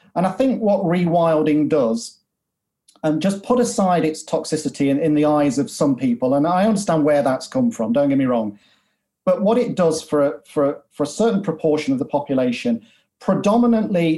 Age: 40-59